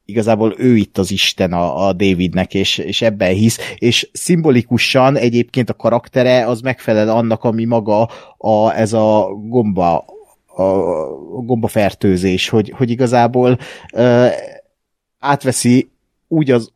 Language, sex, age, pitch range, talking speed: Hungarian, male, 30-49, 105-125 Hz, 120 wpm